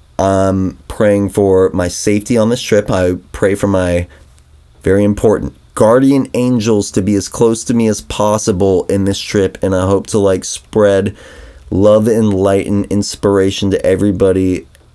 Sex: male